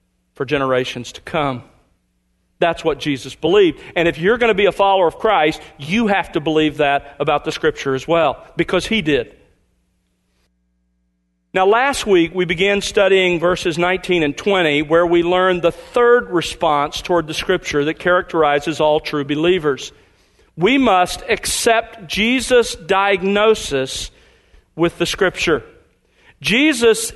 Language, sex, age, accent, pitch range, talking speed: English, male, 50-69, American, 150-220 Hz, 140 wpm